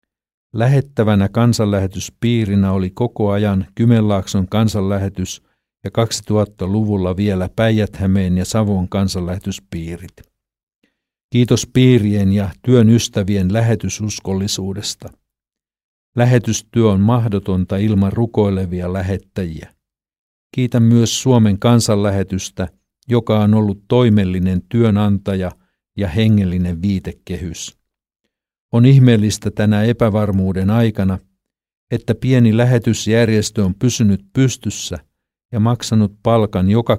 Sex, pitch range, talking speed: male, 95-115 Hz, 85 wpm